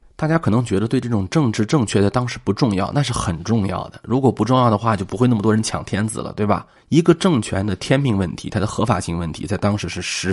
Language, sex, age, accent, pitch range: Chinese, male, 20-39, native, 95-120 Hz